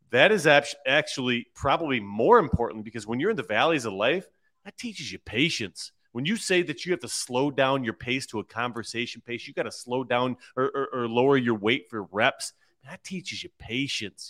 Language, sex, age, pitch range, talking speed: English, male, 30-49, 110-140 Hz, 210 wpm